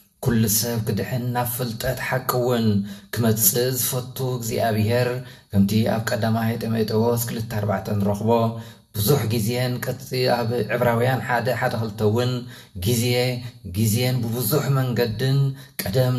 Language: English